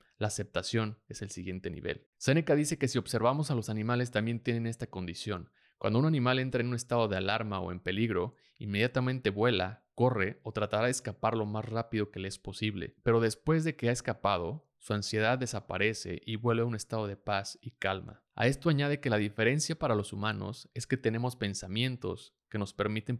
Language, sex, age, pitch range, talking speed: Spanish, male, 30-49, 105-125 Hz, 200 wpm